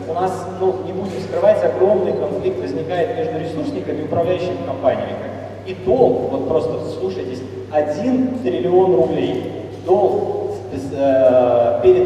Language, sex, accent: Russian, male, native